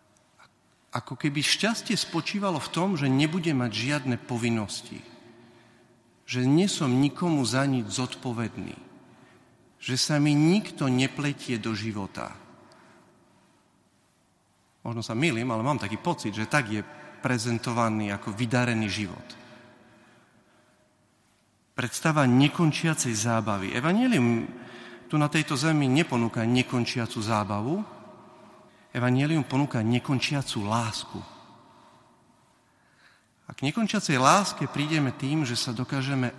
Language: Slovak